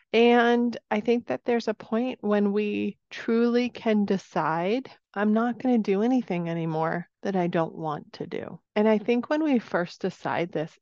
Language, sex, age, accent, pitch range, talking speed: English, female, 30-49, American, 160-195 Hz, 185 wpm